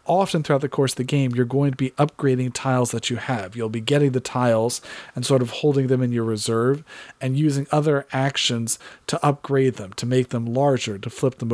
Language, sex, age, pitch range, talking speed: English, male, 40-59, 120-140 Hz, 225 wpm